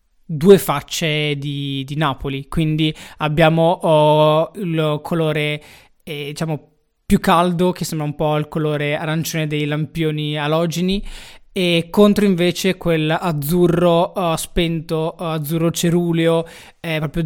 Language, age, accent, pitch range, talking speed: Italian, 20-39, native, 155-190 Hz, 120 wpm